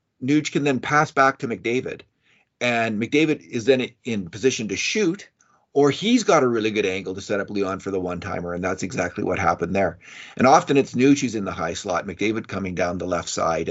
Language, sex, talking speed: English, male, 220 wpm